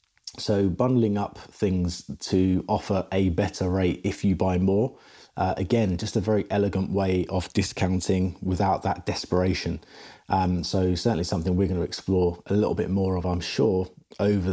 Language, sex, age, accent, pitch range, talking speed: English, male, 30-49, British, 90-105 Hz, 170 wpm